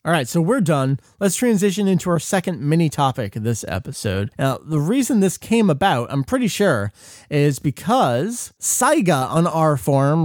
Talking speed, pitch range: 175 wpm, 140-220 Hz